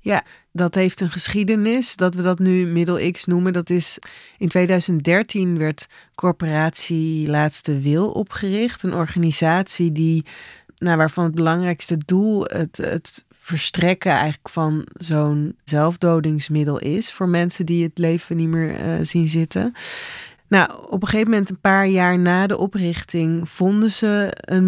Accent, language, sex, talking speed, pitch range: Dutch, Dutch, female, 150 wpm, 160-185 Hz